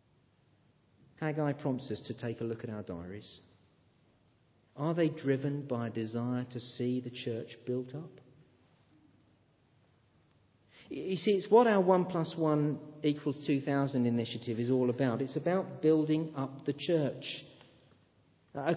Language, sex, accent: English, male, British